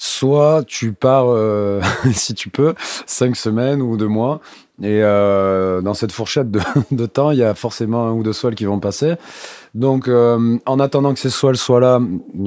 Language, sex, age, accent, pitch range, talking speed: French, male, 30-49, French, 100-130 Hz, 195 wpm